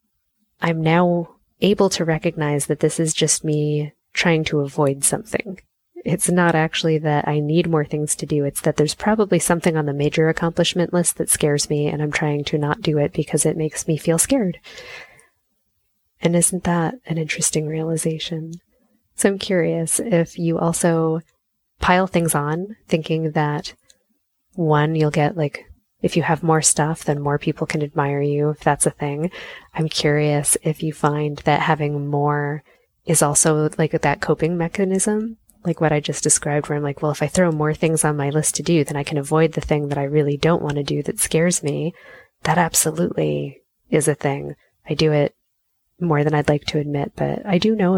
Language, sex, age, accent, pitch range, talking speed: English, female, 20-39, American, 150-175 Hz, 190 wpm